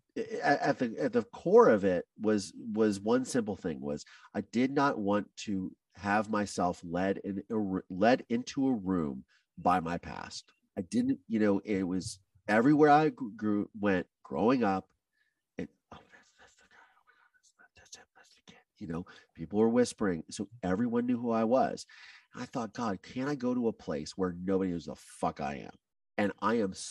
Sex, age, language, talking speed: male, 40-59, English, 165 wpm